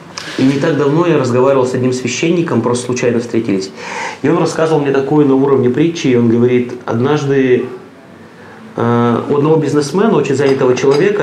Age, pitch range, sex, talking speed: 30-49, 120-165 Hz, male, 160 wpm